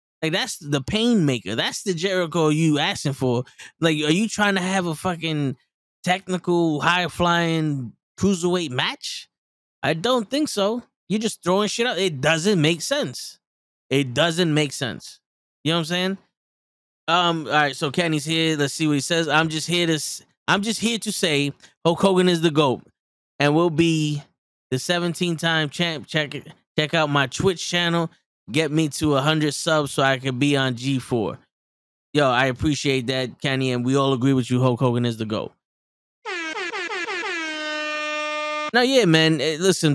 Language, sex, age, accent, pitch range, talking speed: English, male, 10-29, American, 130-175 Hz, 175 wpm